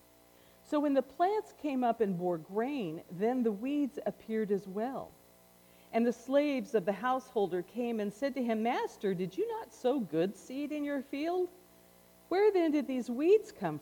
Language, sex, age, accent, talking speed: English, female, 50-69, American, 180 wpm